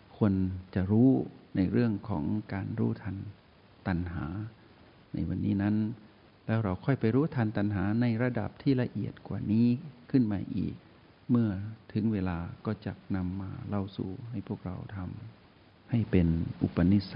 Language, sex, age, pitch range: Thai, male, 60-79, 95-110 Hz